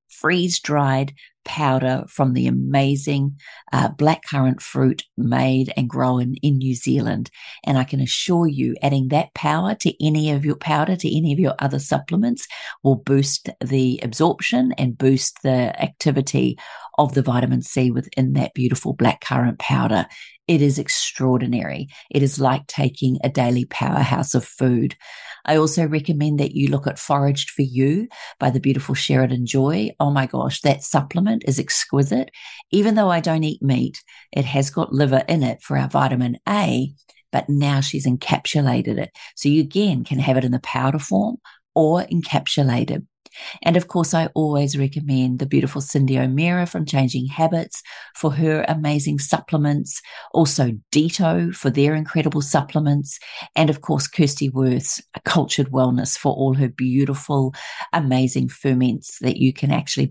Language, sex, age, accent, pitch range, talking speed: English, female, 40-59, Australian, 130-160 Hz, 160 wpm